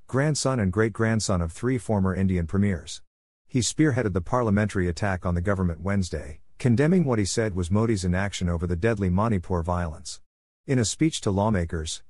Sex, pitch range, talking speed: male, 90-115 Hz, 170 wpm